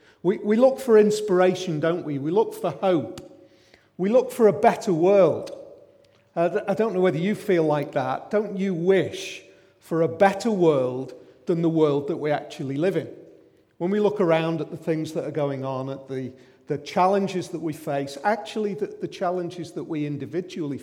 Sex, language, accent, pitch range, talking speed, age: male, English, British, 140-185 Hz, 180 wpm, 40-59